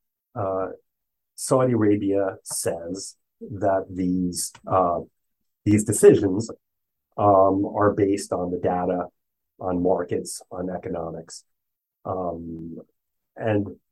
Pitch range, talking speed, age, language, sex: 95-115 Hz, 90 wpm, 40-59, English, male